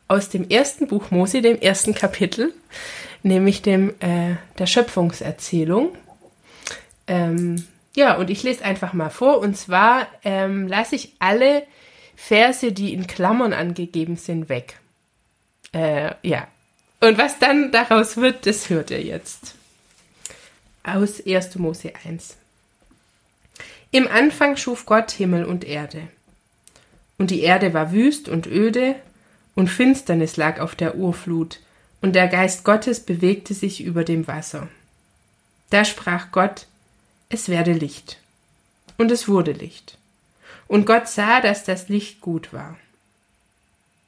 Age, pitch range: 20-39, 170-225 Hz